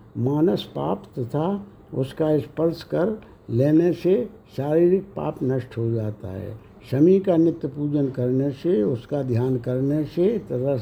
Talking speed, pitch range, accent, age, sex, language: 145 wpm, 130-165 Hz, native, 60-79, male, Hindi